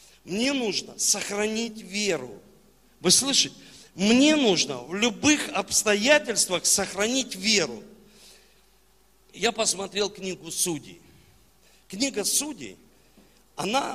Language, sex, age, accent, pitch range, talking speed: Russian, male, 50-69, native, 200-280 Hz, 85 wpm